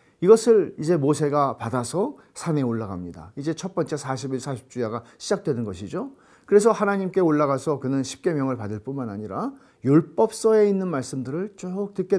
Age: 40-59